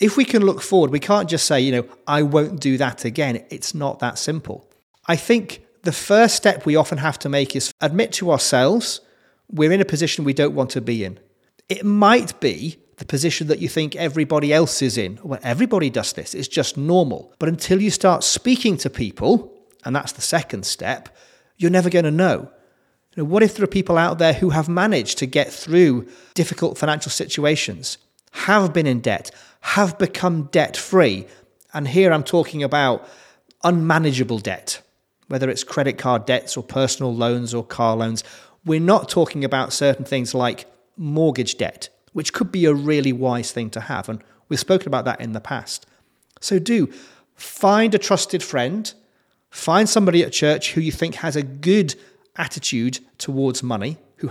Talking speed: 185 wpm